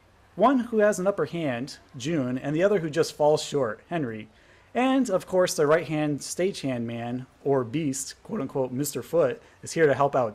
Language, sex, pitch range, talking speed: English, male, 130-185 Hz, 185 wpm